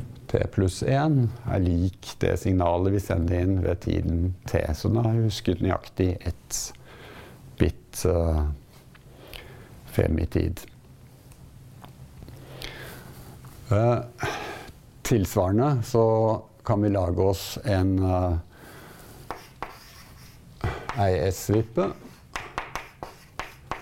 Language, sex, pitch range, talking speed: English, male, 95-115 Hz, 80 wpm